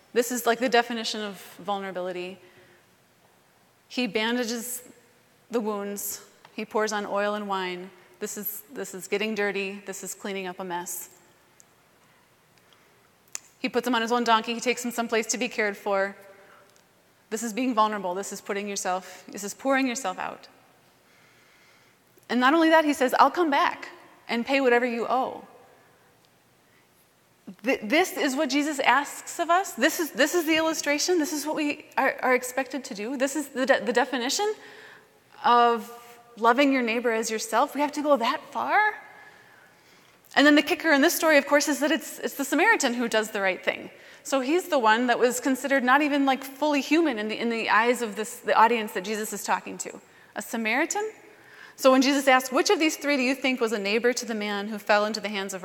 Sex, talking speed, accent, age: female, 195 wpm, American, 30-49